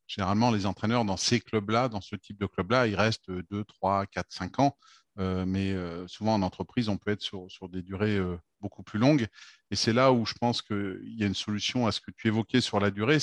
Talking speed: 245 wpm